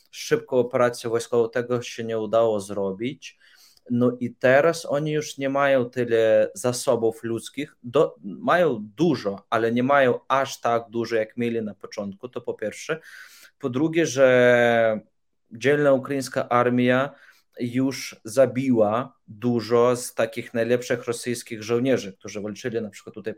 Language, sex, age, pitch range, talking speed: Polish, male, 20-39, 115-135 Hz, 135 wpm